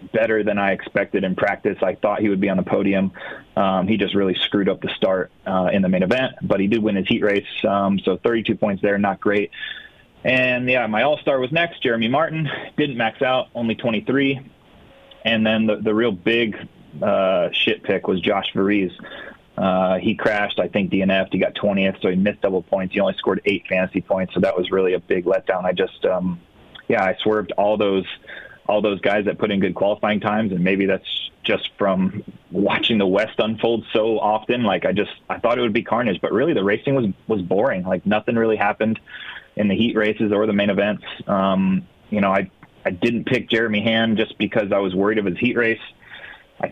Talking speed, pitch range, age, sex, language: 215 wpm, 100-115 Hz, 30-49, male, English